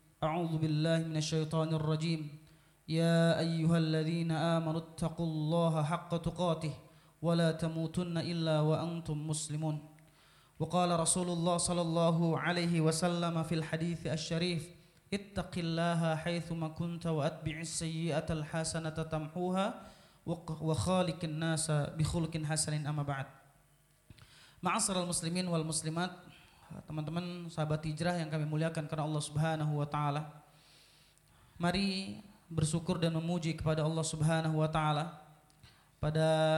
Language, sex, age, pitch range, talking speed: Indonesian, male, 30-49, 155-175 Hz, 110 wpm